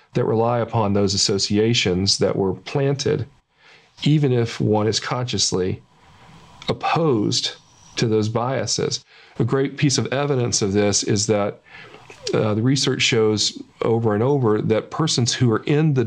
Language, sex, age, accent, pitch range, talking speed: English, male, 40-59, American, 105-130 Hz, 145 wpm